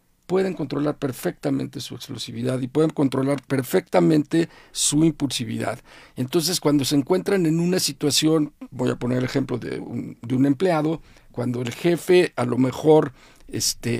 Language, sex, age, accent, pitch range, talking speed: Spanish, male, 50-69, Mexican, 130-165 Hz, 150 wpm